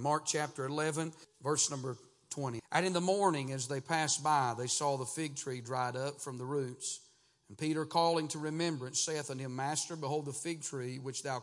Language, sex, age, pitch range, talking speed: English, male, 40-59, 135-170 Hz, 205 wpm